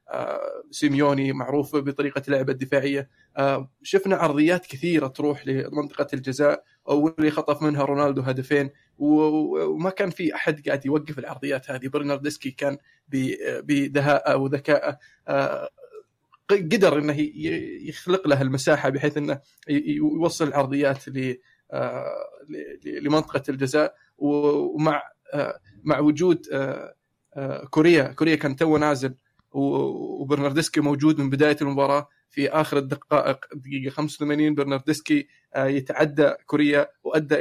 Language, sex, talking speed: Arabic, male, 100 wpm